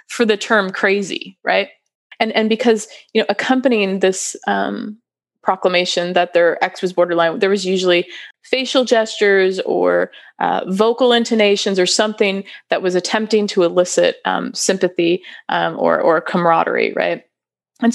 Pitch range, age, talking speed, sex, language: 180-225 Hz, 20-39, 145 wpm, female, English